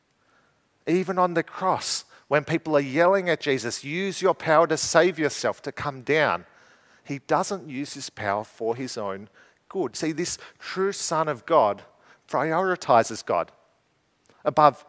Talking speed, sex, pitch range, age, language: 150 wpm, male, 130-160 Hz, 50-69, English